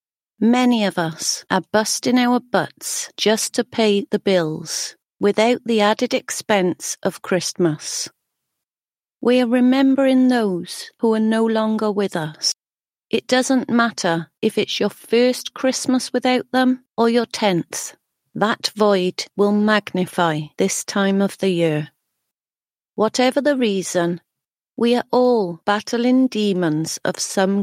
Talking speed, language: 130 wpm, English